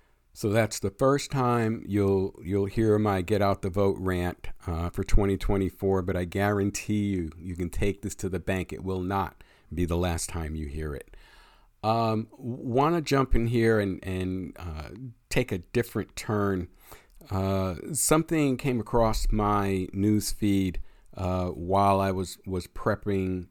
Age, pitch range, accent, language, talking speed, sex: 50-69, 90-110 Hz, American, English, 160 wpm, male